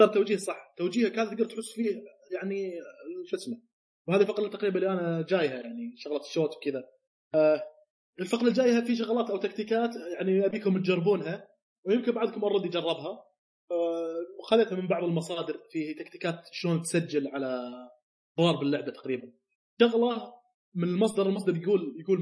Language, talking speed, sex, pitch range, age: Arabic, 140 wpm, male, 165-220 Hz, 20-39